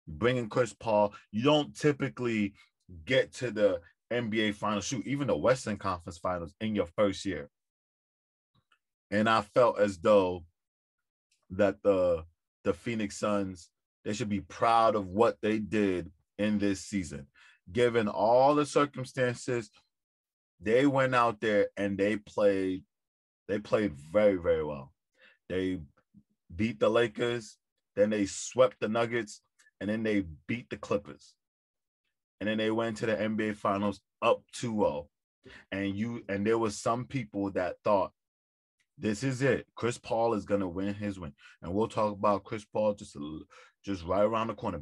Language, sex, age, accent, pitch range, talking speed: English, male, 20-39, American, 95-115 Hz, 155 wpm